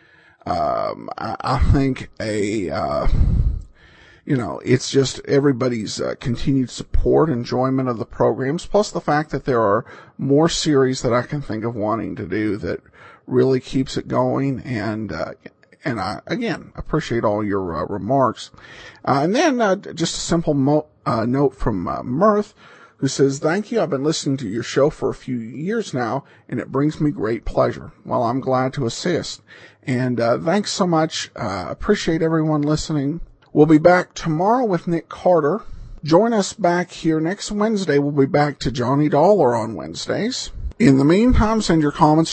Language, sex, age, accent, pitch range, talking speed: English, male, 50-69, American, 130-170 Hz, 175 wpm